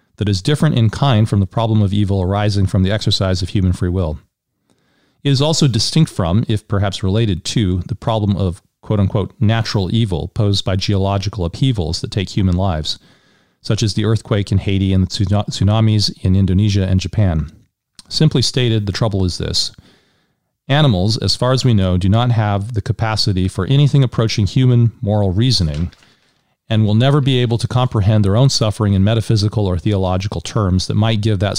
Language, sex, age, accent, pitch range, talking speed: English, male, 40-59, American, 95-115 Hz, 180 wpm